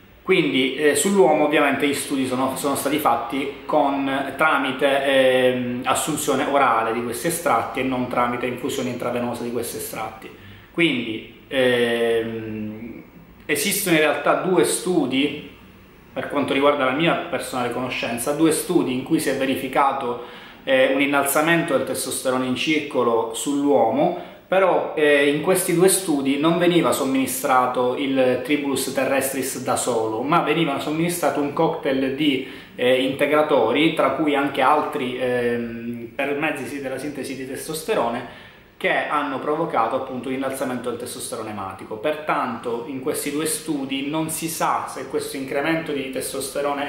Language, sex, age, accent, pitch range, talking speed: Italian, male, 20-39, native, 130-150 Hz, 140 wpm